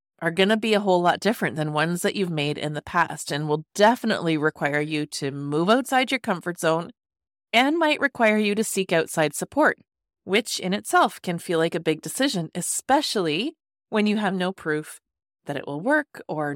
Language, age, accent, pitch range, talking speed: English, 30-49, American, 160-215 Hz, 200 wpm